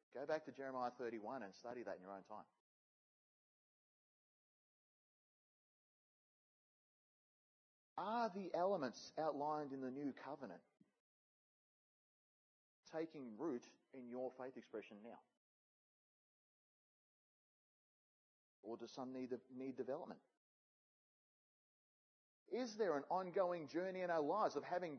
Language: English